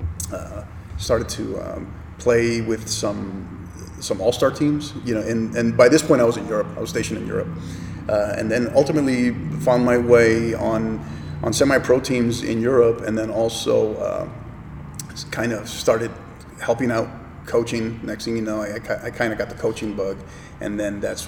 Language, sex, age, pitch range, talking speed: English, male, 30-49, 105-120 Hz, 185 wpm